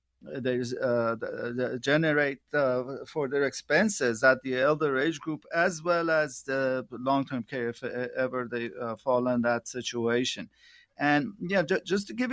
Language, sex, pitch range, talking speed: English, male, 130-160 Hz, 170 wpm